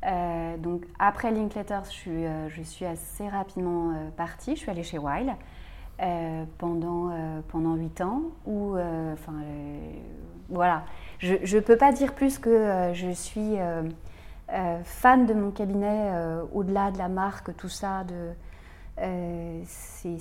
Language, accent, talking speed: French, French, 155 wpm